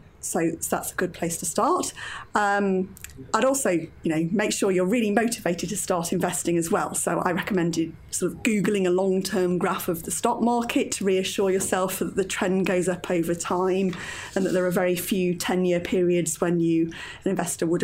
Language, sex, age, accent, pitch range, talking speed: English, female, 30-49, British, 170-195 Hz, 200 wpm